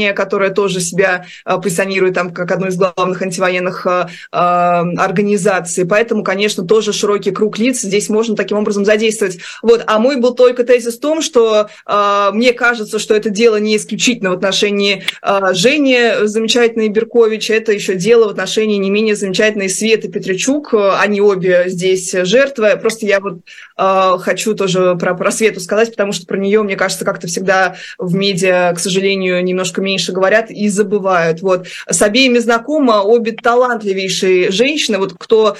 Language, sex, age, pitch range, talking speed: Russian, female, 20-39, 195-225 Hz, 160 wpm